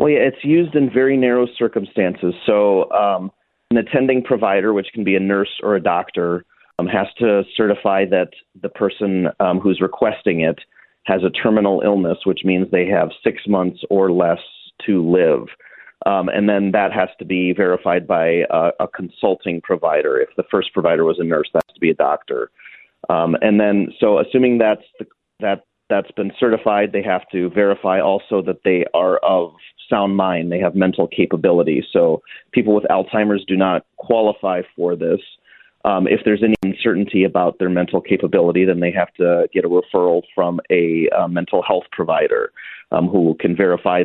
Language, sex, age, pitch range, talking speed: English, male, 30-49, 90-110 Hz, 180 wpm